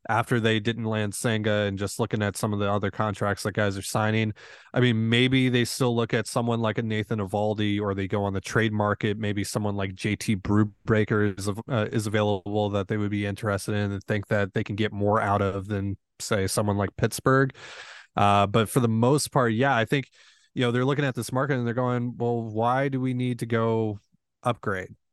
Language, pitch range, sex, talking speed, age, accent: English, 105-120 Hz, male, 220 wpm, 20-39, American